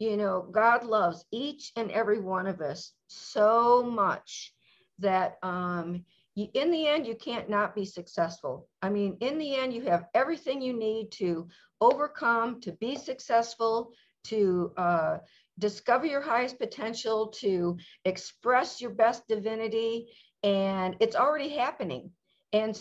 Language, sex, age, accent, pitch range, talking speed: English, female, 50-69, American, 185-235 Hz, 140 wpm